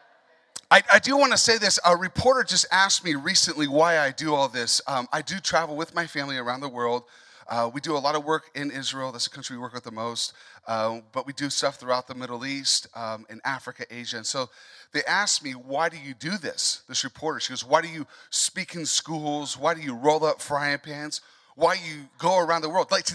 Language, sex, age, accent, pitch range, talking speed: English, male, 30-49, American, 130-175 Hz, 245 wpm